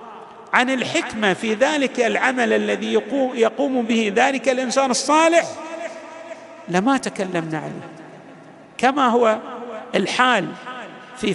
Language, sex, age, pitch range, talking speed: Arabic, male, 50-69, 200-285 Hz, 100 wpm